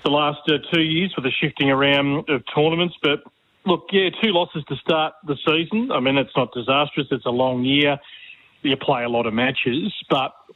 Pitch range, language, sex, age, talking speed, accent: 135-160 Hz, English, male, 40-59, 200 wpm, Australian